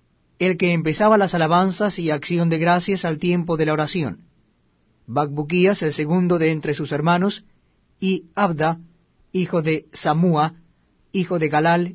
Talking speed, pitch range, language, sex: 145 wpm, 155-185 Hz, Spanish, male